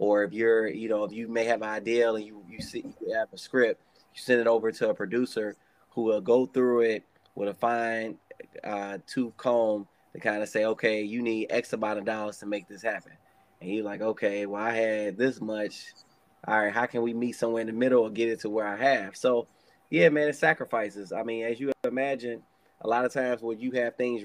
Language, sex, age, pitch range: English, male, 20-39, 110-125 Hz